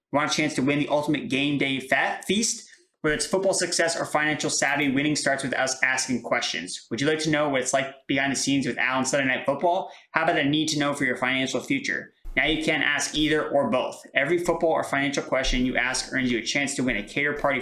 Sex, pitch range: male, 135-160 Hz